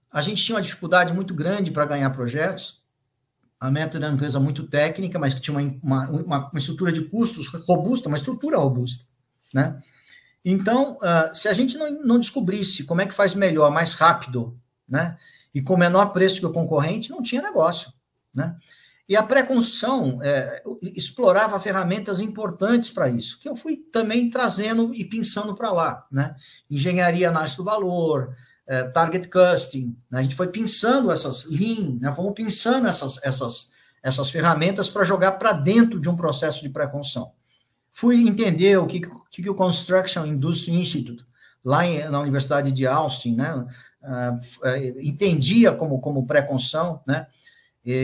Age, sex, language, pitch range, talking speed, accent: 50-69, male, Portuguese, 140-195 Hz, 160 wpm, Brazilian